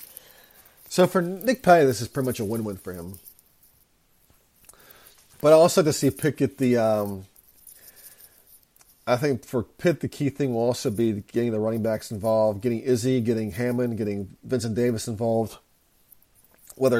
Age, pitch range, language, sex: 40-59, 110-135 Hz, English, male